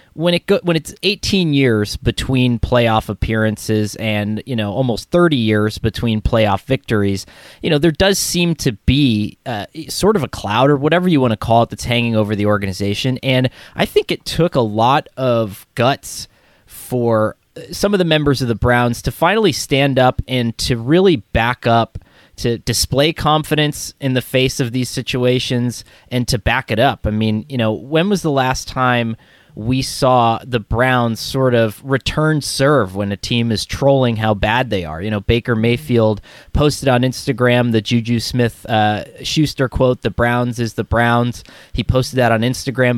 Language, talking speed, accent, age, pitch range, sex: English, 185 wpm, American, 20-39, 110-135 Hz, male